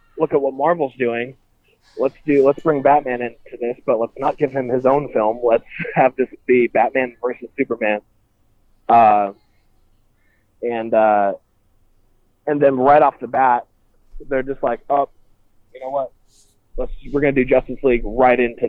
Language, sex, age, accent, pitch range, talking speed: English, male, 20-39, American, 105-135 Hz, 165 wpm